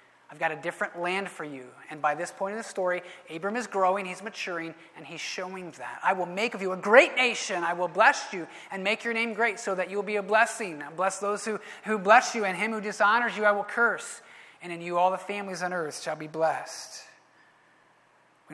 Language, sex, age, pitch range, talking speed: English, male, 30-49, 175-210 Hz, 240 wpm